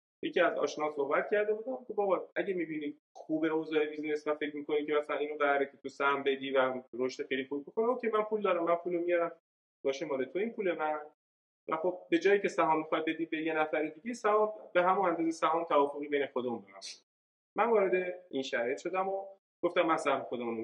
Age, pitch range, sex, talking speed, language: 30-49, 135-185 Hz, male, 215 wpm, Persian